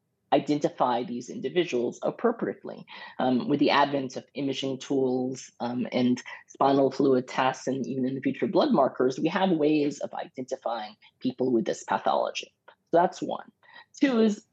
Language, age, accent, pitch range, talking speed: English, 30-49, American, 135-185 Hz, 155 wpm